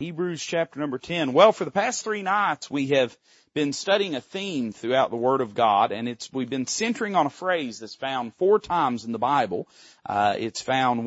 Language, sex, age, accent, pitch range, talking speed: English, male, 40-59, American, 120-165 Hz, 210 wpm